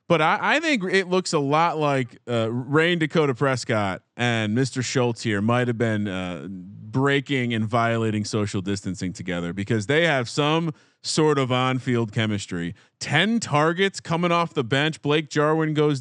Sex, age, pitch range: male, 30-49, 115-155 Hz